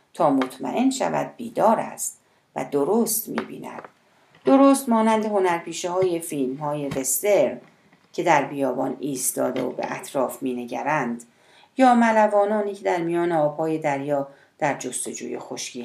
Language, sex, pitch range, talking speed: Persian, female, 150-240 Hz, 125 wpm